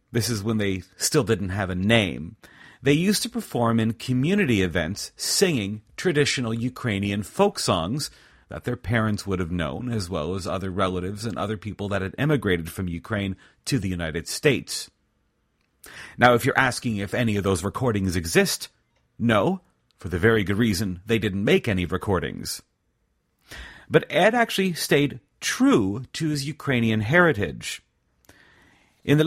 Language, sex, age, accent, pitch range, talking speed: English, male, 40-59, American, 95-135 Hz, 155 wpm